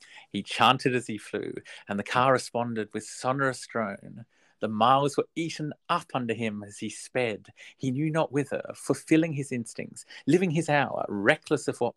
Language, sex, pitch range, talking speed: English, male, 110-150 Hz, 175 wpm